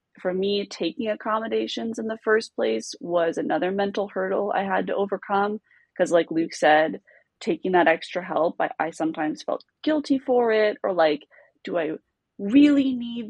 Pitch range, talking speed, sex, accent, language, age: 170-230 Hz, 165 wpm, female, American, English, 20-39